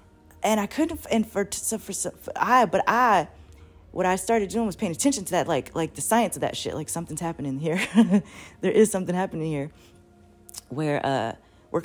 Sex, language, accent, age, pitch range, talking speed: female, English, American, 20-39, 135-185 Hz, 205 wpm